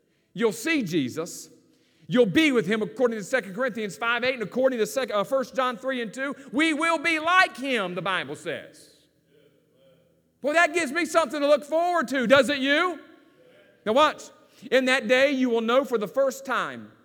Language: English